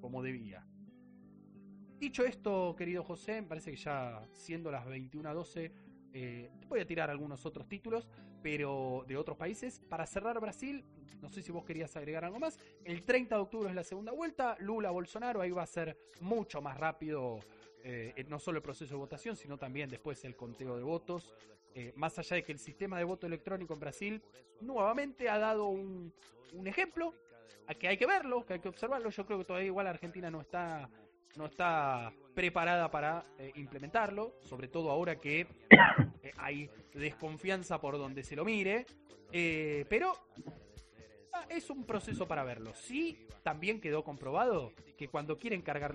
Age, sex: 20-39, male